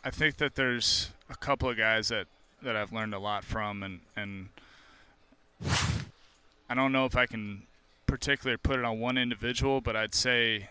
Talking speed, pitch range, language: 180 wpm, 100-115 Hz, English